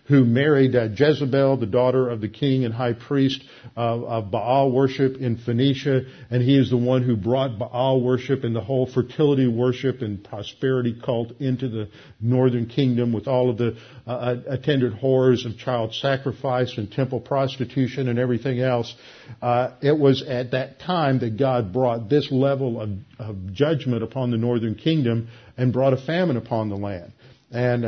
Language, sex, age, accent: English, male, 50-69, American